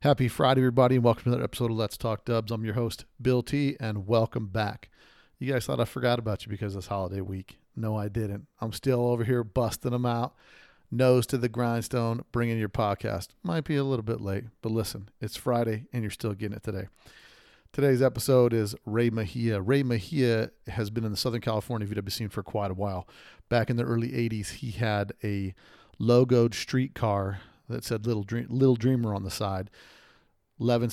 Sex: male